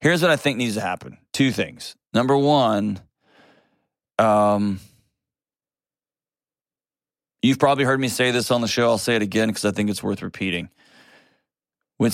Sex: male